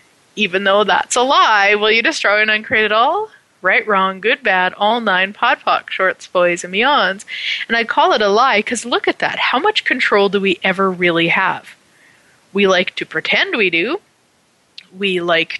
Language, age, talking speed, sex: English, 30-49, 190 wpm, female